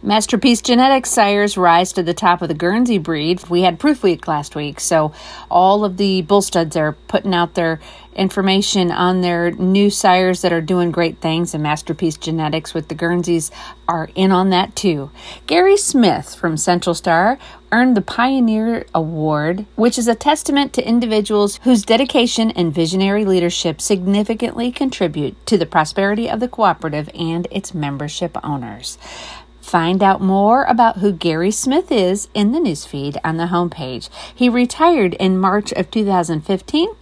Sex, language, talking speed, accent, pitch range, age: female, English, 160 wpm, American, 170-220 Hz, 40-59